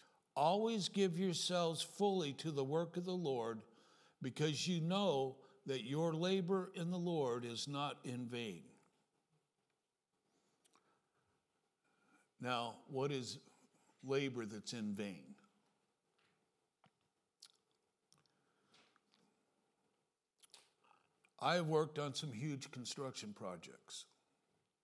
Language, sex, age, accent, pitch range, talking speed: English, male, 60-79, American, 125-170 Hz, 90 wpm